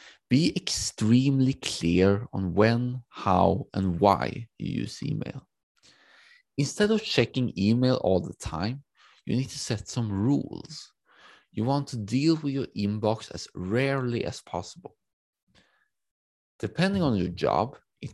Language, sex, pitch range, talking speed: English, male, 95-130 Hz, 130 wpm